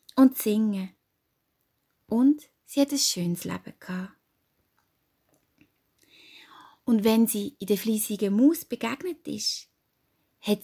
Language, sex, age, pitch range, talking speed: German, female, 20-39, 205-295 Hz, 105 wpm